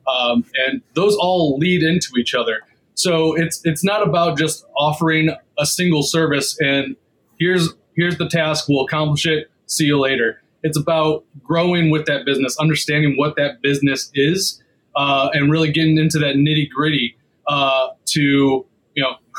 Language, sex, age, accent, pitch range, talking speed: English, male, 20-39, American, 135-165 Hz, 160 wpm